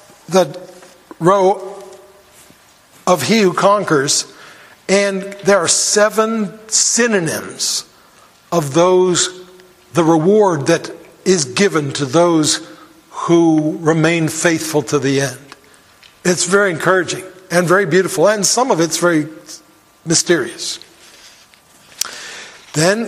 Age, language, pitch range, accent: 60-79, English, 160-200 Hz, American